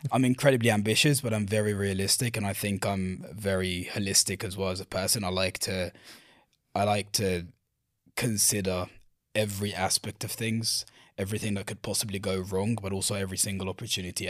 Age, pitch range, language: 20-39, 95-110 Hz, English